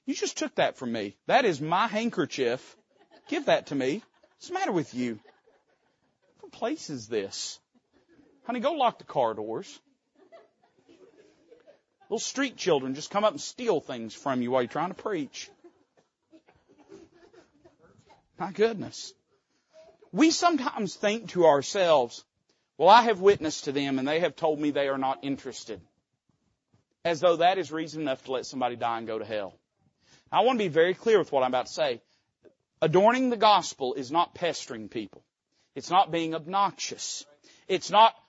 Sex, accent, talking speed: male, American, 165 wpm